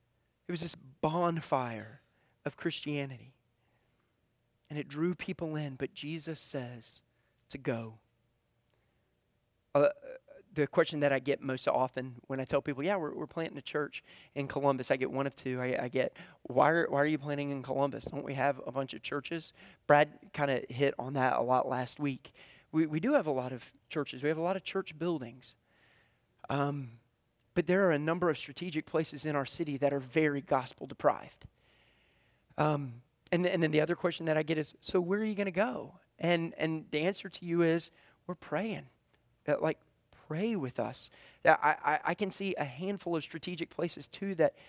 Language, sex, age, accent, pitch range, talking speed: English, male, 30-49, American, 135-170 Hz, 195 wpm